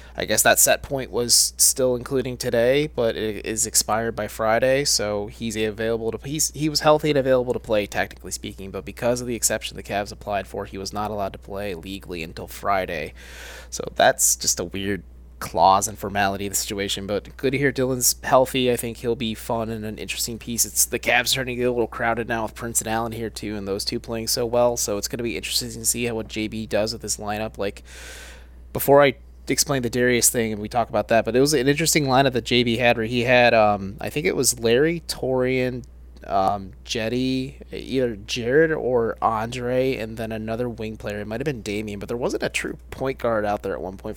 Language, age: English, 20-39